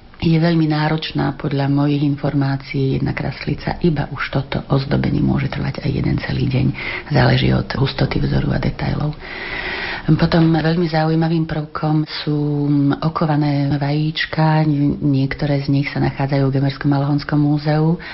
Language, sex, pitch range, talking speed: Slovak, female, 140-155 Hz, 130 wpm